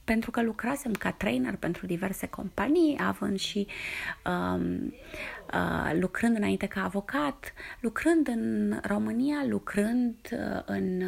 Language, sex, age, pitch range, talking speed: Romanian, female, 20-39, 200-255 Hz, 105 wpm